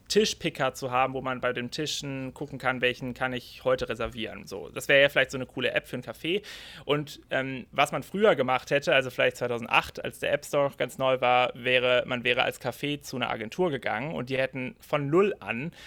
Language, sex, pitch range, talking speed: German, male, 125-145 Hz, 225 wpm